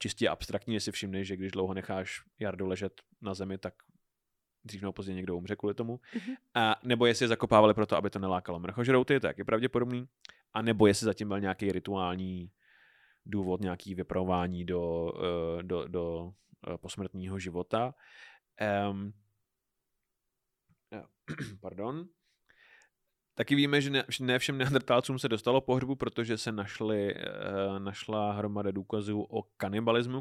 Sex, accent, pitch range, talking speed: male, native, 100-120 Hz, 130 wpm